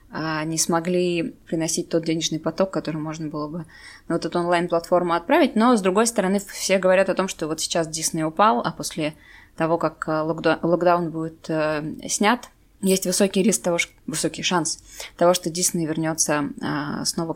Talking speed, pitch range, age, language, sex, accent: 170 wpm, 160-185 Hz, 20-39, Russian, female, native